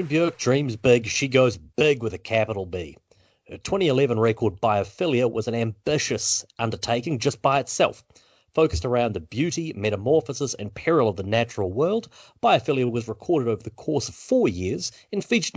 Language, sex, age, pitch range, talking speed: English, male, 30-49, 110-145 Hz, 165 wpm